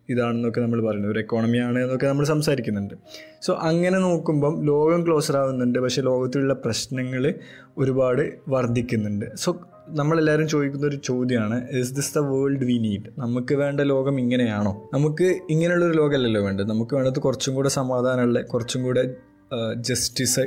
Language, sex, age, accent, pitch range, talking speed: Malayalam, male, 20-39, native, 120-140 Hz, 140 wpm